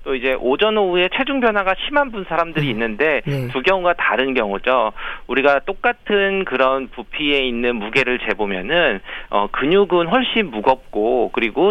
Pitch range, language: 120-185 Hz, Korean